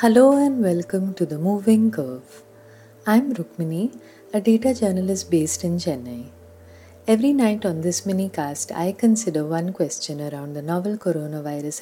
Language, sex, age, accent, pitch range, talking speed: English, female, 30-49, Indian, 170-225 Hz, 140 wpm